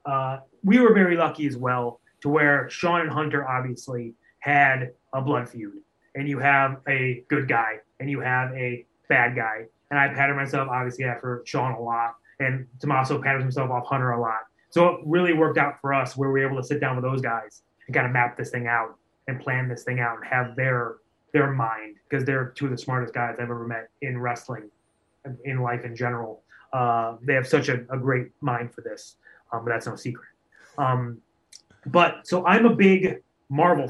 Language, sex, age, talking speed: English, male, 20-39, 210 wpm